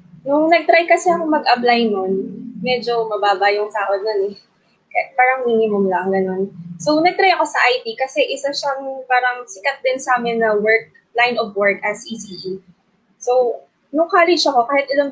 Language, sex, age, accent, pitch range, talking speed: English, female, 20-39, Filipino, 205-280 Hz, 165 wpm